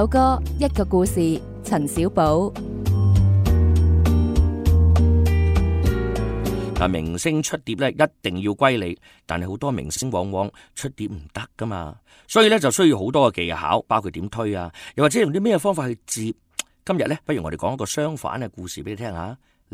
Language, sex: Chinese, male